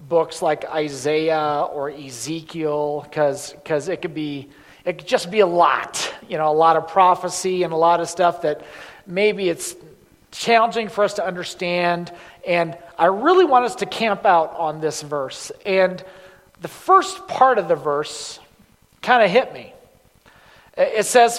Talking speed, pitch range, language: 165 wpm, 145-190 Hz, English